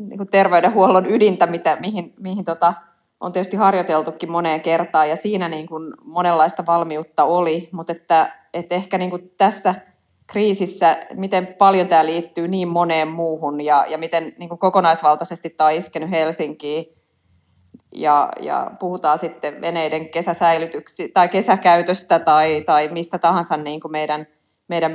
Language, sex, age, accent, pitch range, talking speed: Finnish, female, 30-49, native, 155-180 Hz, 130 wpm